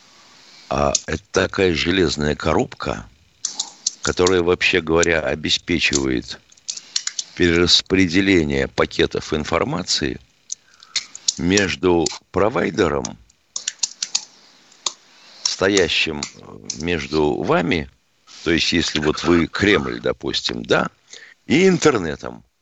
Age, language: 60-79, Russian